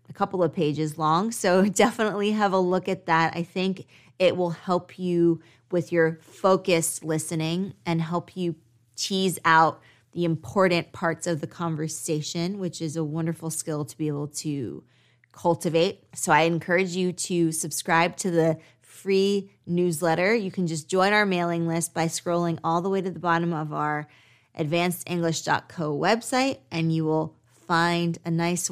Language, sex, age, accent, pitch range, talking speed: English, female, 20-39, American, 160-185 Hz, 165 wpm